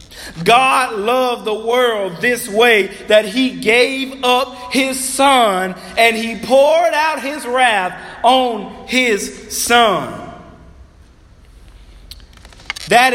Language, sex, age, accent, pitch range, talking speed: English, male, 40-59, American, 195-255 Hz, 100 wpm